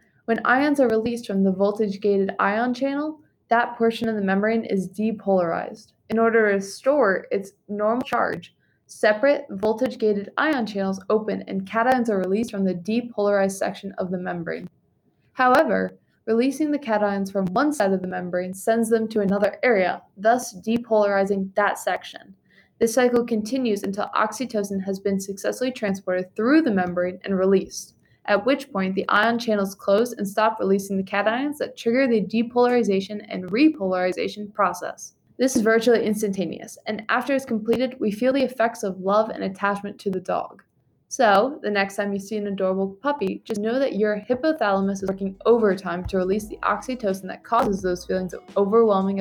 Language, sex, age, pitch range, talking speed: English, female, 20-39, 195-230 Hz, 165 wpm